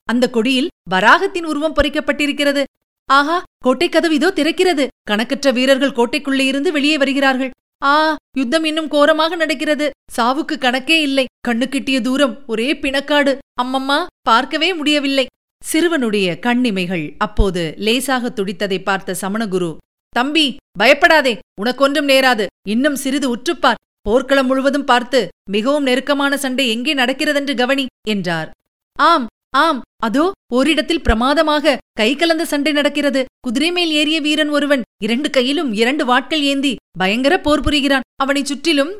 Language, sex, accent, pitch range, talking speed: Tamil, female, native, 245-300 Hz, 120 wpm